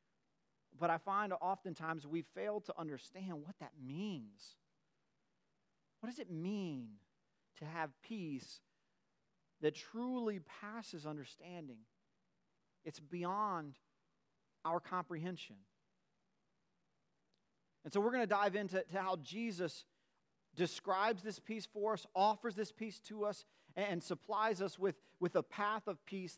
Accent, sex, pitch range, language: American, male, 155-195 Hz, English